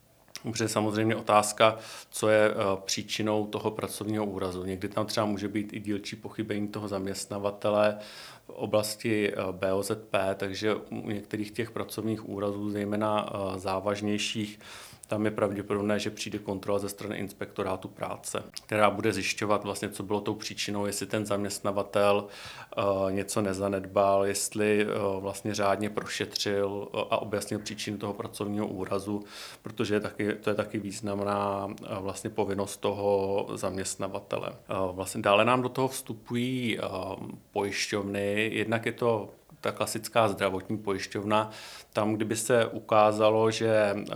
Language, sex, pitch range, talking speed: Czech, male, 100-110 Hz, 125 wpm